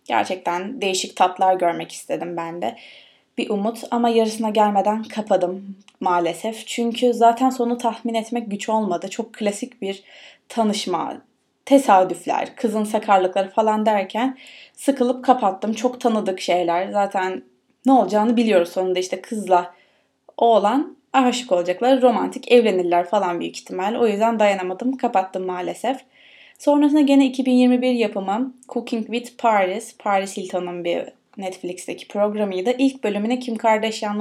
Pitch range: 185-240 Hz